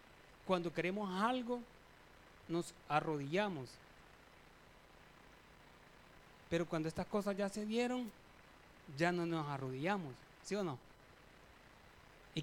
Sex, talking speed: male, 95 wpm